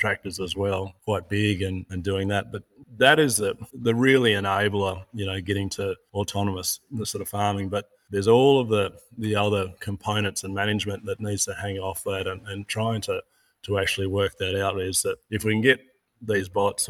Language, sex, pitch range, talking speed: English, male, 95-110 Hz, 205 wpm